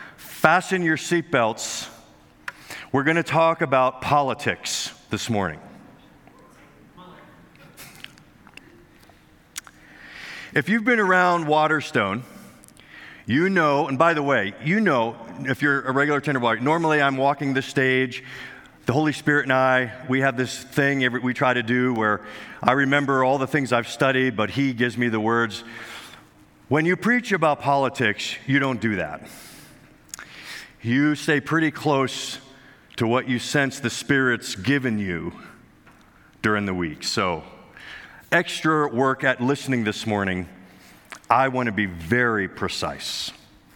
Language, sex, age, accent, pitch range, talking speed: English, male, 50-69, American, 125-155 Hz, 135 wpm